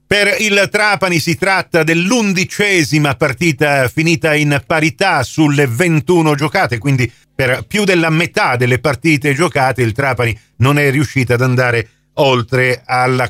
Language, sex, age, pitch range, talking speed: Italian, male, 50-69, 120-155 Hz, 135 wpm